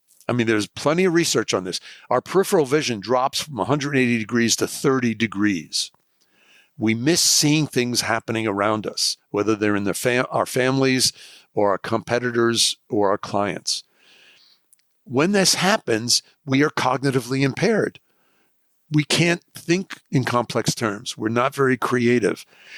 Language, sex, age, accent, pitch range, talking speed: English, male, 60-79, American, 115-150 Hz, 145 wpm